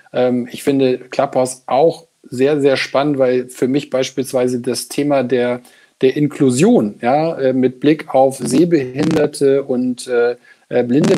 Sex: male